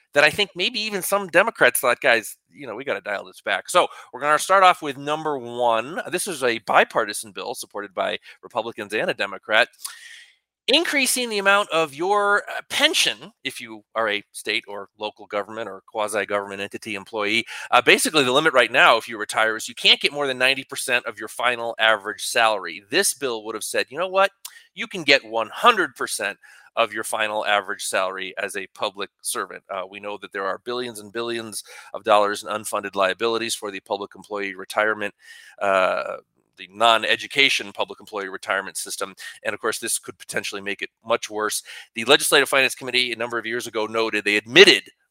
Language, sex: English, male